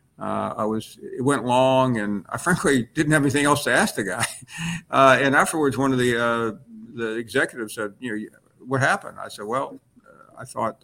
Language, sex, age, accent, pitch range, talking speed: English, male, 50-69, American, 115-140 Hz, 205 wpm